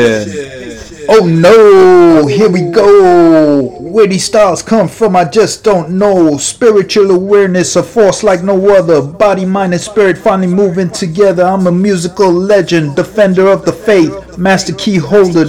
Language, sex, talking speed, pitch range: English, male, 150 wpm, 165-190 Hz